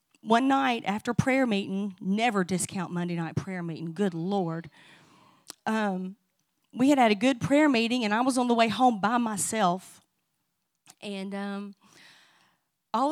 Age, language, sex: 30-49, English, female